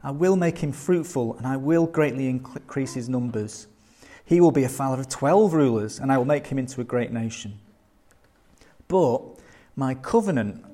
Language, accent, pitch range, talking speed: English, British, 115-150 Hz, 180 wpm